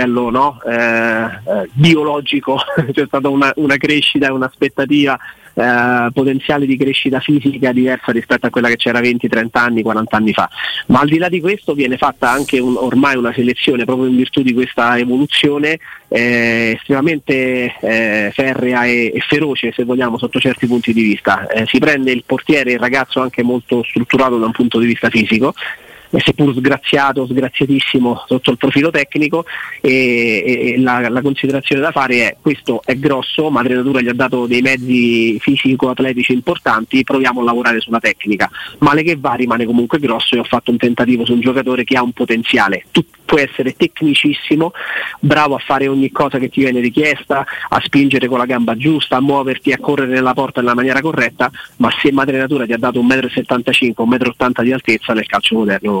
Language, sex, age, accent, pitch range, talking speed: Italian, male, 30-49, native, 120-140 Hz, 175 wpm